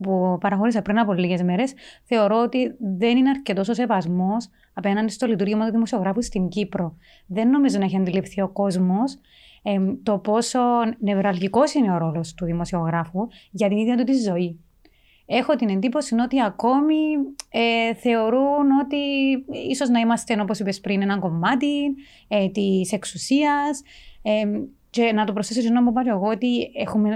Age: 30-49